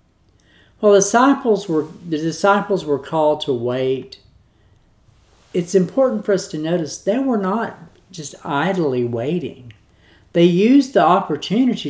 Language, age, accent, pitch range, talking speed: English, 50-69, American, 125-180 Hz, 120 wpm